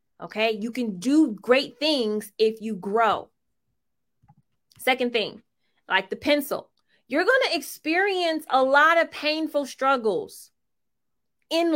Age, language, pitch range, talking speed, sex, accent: 20-39, English, 195-285 Hz, 115 wpm, female, American